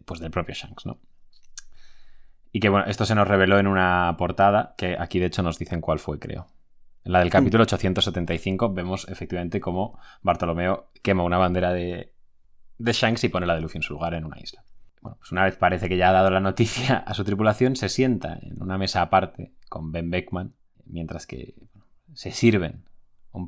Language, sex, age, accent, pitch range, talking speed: Spanish, male, 20-39, Spanish, 85-110 Hz, 200 wpm